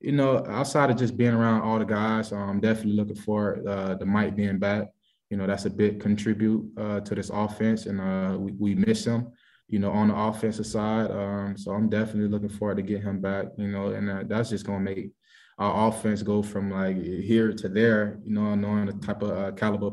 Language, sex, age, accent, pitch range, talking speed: English, male, 20-39, American, 95-105 Hz, 230 wpm